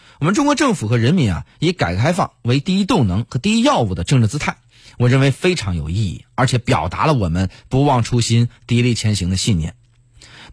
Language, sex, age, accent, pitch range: Chinese, male, 30-49, native, 110-150 Hz